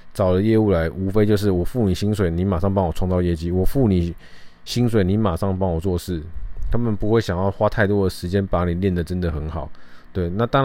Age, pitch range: 20-39, 85-105 Hz